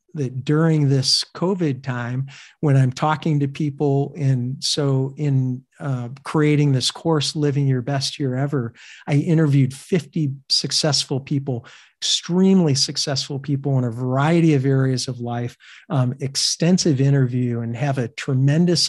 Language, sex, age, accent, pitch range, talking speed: English, male, 50-69, American, 130-150 Hz, 140 wpm